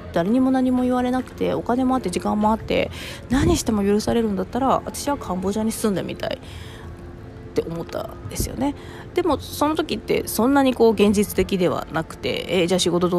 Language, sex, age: Japanese, female, 20-39